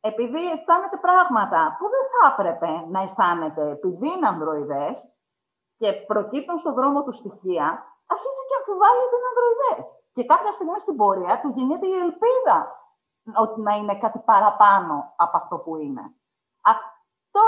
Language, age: Greek, 30-49